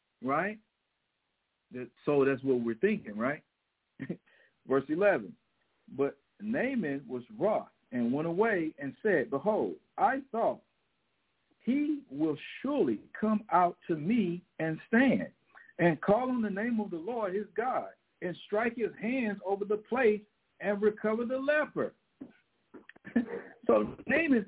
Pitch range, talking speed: 165-235 Hz, 130 wpm